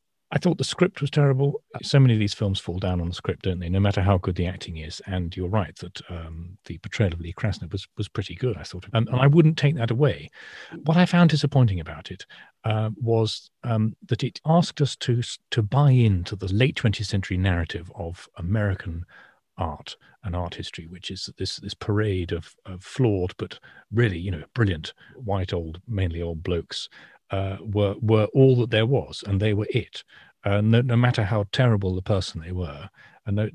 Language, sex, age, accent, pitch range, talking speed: English, male, 40-59, British, 90-120 Hz, 210 wpm